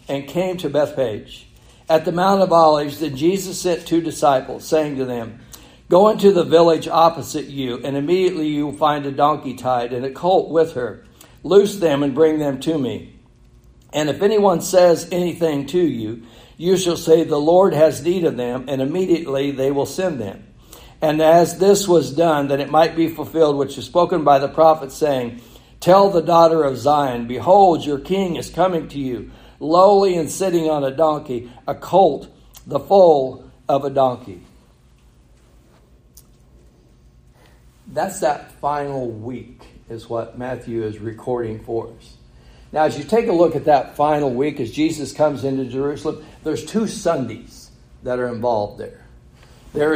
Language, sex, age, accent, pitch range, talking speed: English, male, 60-79, American, 125-165 Hz, 170 wpm